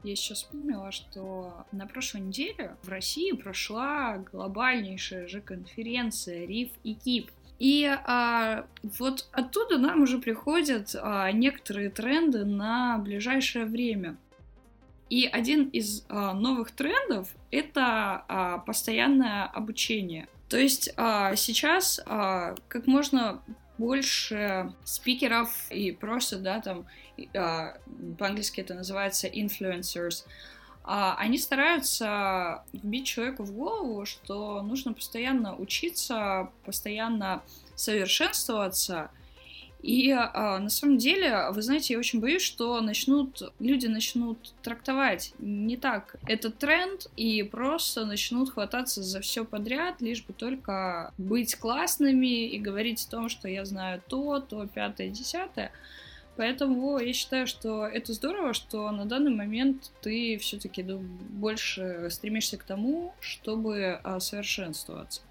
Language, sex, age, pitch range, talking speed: Russian, female, 20-39, 200-260 Hz, 110 wpm